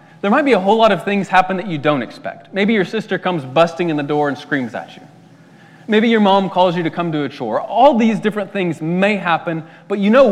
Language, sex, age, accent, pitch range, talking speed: English, male, 20-39, American, 155-195 Hz, 255 wpm